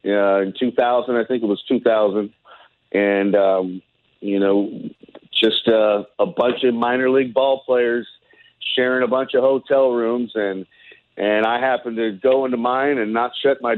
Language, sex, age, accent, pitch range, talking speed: English, male, 50-69, American, 110-140 Hz, 175 wpm